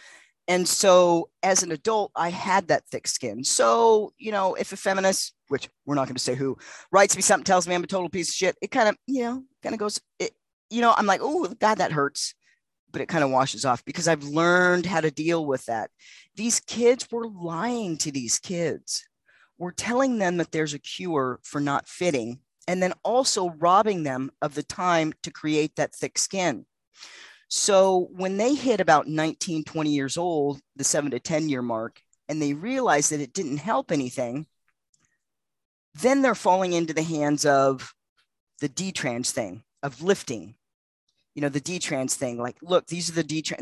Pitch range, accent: 145-195 Hz, American